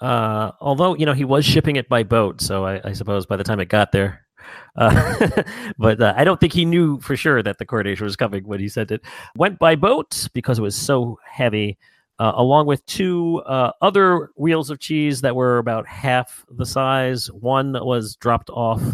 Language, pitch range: English, 110-145 Hz